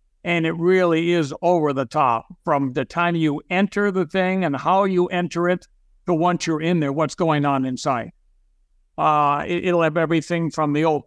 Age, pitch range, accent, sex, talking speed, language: 60-79, 145-175 Hz, American, male, 195 wpm, English